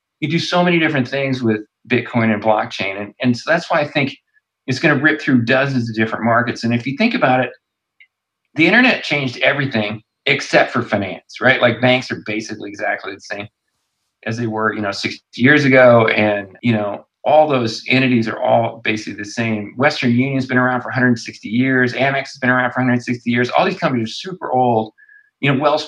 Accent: American